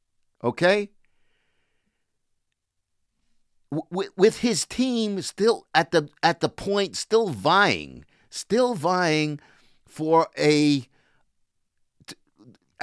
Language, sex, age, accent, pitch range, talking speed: English, male, 50-69, American, 145-215 Hz, 85 wpm